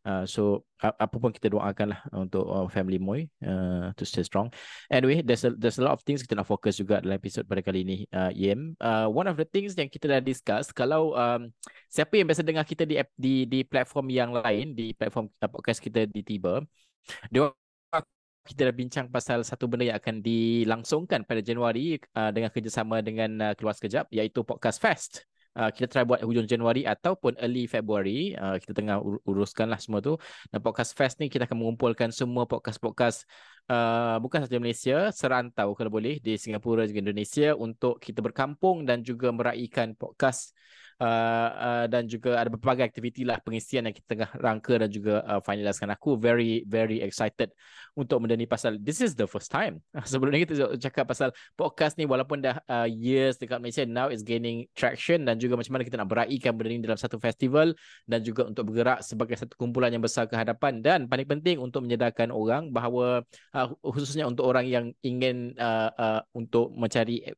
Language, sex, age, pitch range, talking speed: Malay, male, 20-39, 110-130 Hz, 190 wpm